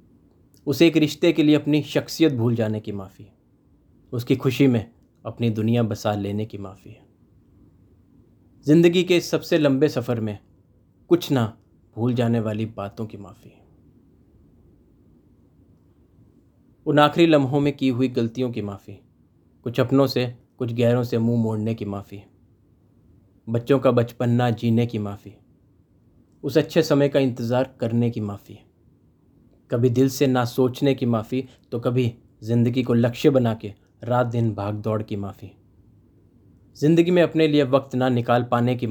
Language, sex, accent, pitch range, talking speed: Hindi, male, native, 105-130 Hz, 150 wpm